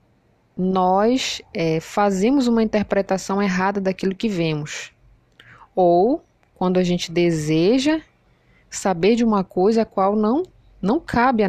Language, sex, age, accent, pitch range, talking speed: Portuguese, female, 20-39, Brazilian, 165-215 Hz, 120 wpm